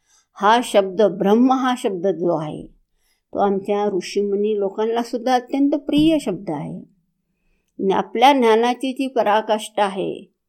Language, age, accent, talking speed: Hindi, 60-79, native, 130 wpm